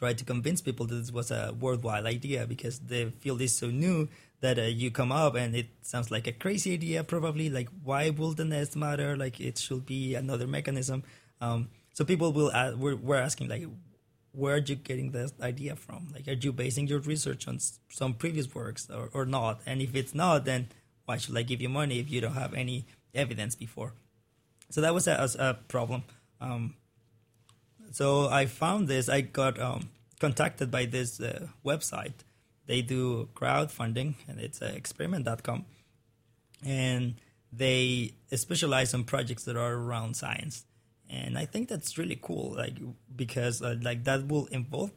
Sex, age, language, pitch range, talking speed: male, 20-39, English, 120-140 Hz, 185 wpm